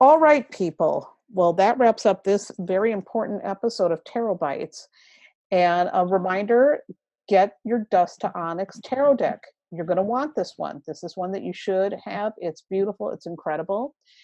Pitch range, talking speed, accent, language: 180-240 Hz, 175 wpm, American, English